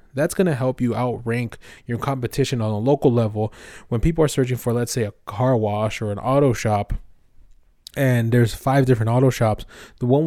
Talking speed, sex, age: 195 wpm, male, 20-39